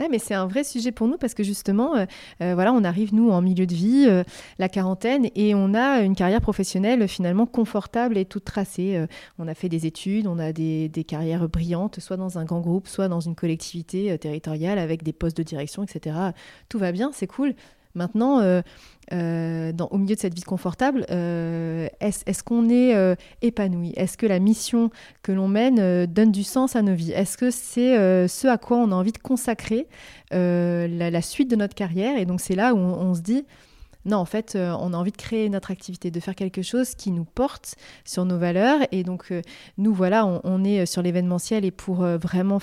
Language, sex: French, female